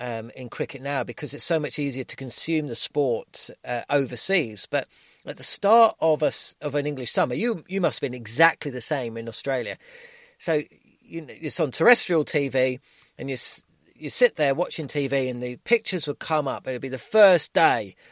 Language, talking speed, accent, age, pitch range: English, 195 wpm, British, 40-59, 135-185 Hz